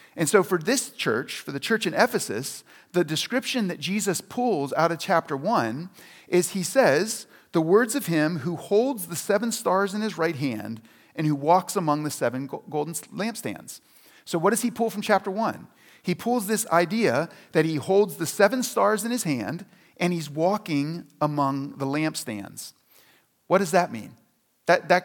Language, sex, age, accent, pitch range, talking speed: English, male, 40-59, American, 150-205 Hz, 180 wpm